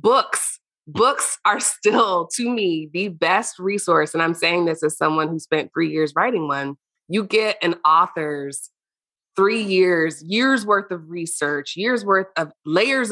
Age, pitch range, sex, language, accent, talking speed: 20-39, 155-180 Hz, female, English, American, 160 wpm